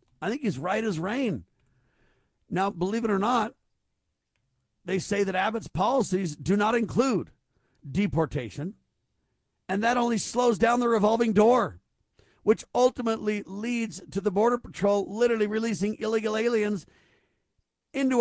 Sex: male